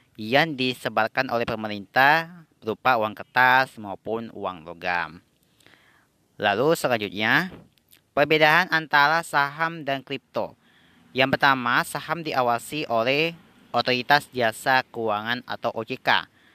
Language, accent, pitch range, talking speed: Indonesian, native, 115-145 Hz, 100 wpm